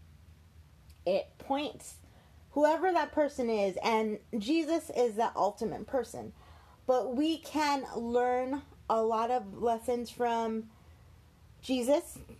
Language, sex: English, female